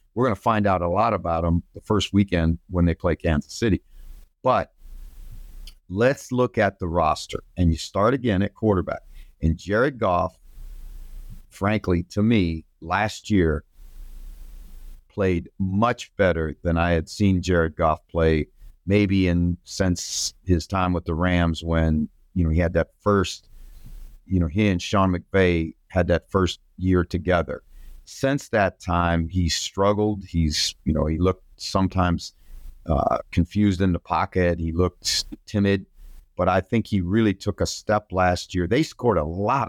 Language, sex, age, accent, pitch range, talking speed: English, male, 50-69, American, 85-100 Hz, 160 wpm